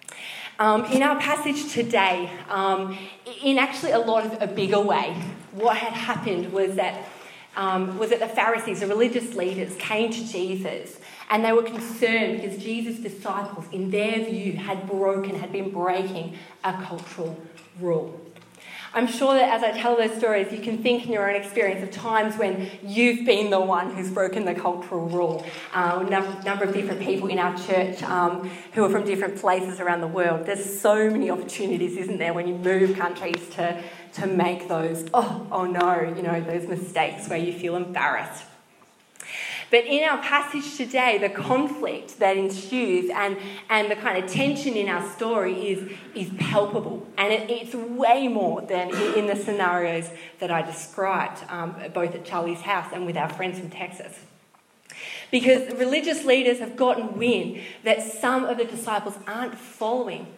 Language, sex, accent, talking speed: English, female, Australian, 170 wpm